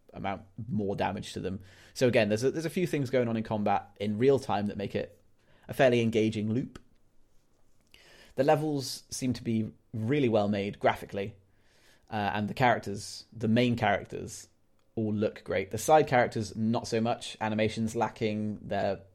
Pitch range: 100-115 Hz